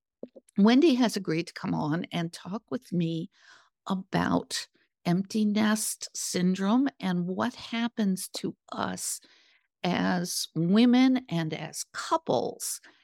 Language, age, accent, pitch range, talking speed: English, 50-69, American, 180-230 Hz, 110 wpm